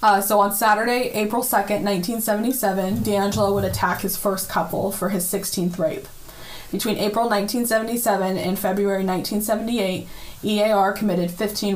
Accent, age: American, 10-29